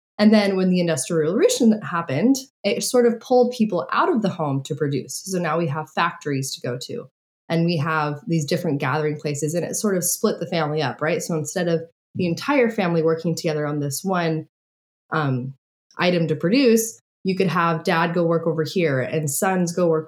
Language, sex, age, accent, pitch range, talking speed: English, female, 20-39, American, 155-195 Hz, 205 wpm